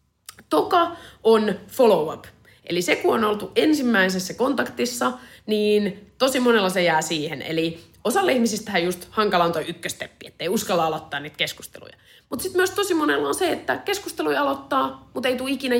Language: Finnish